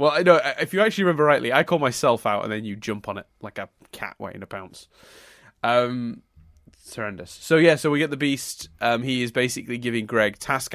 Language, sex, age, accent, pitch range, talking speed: English, male, 20-39, British, 95-115 Hz, 230 wpm